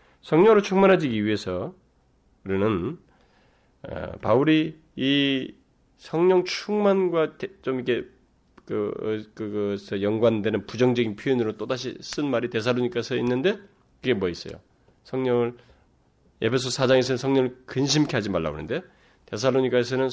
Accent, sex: native, male